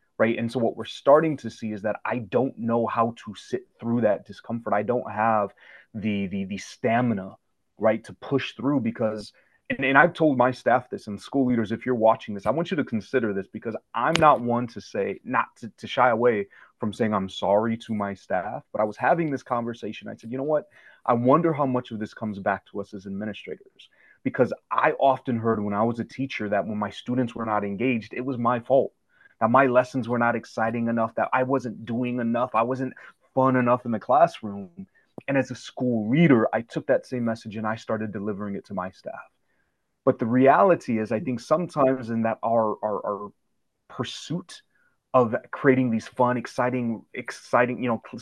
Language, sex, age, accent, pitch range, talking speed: English, male, 30-49, American, 110-130 Hz, 215 wpm